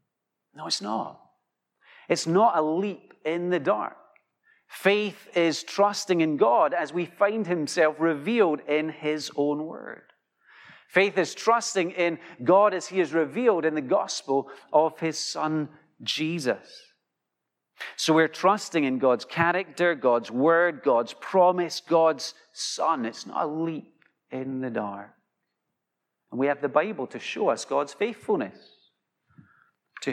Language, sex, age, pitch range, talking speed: English, male, 40-59, 140-180 Hz, 140 wpm